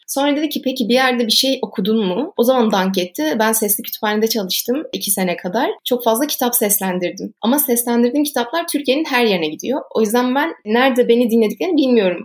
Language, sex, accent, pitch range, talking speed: Turkish, female, native, 205-255 Hz, 190 wpm